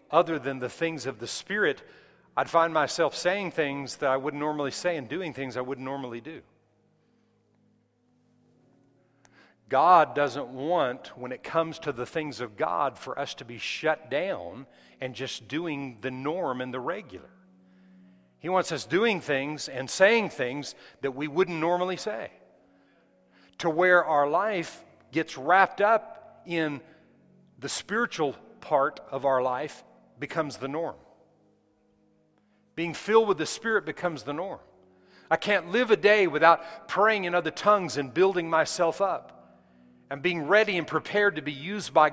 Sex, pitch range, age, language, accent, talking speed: male, 140-180 Hz, 50-69, English, American, 155 wpm